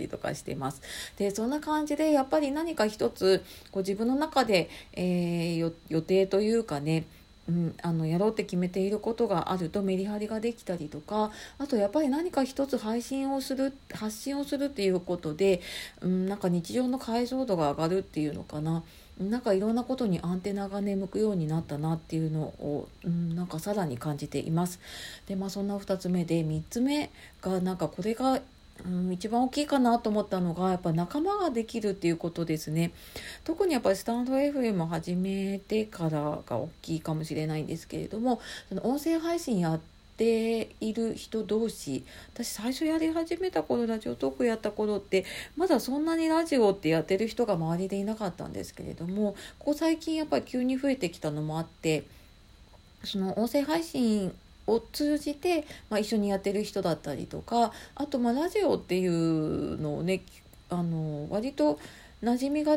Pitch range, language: 170-245 Hz, Japanese